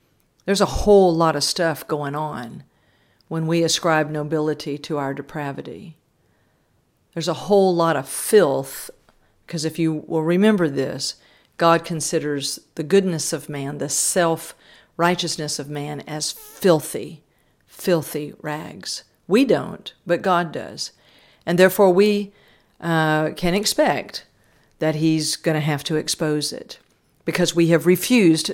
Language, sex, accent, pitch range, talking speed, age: English, female, American, 150-170 Hz, 135 wpm, 50-69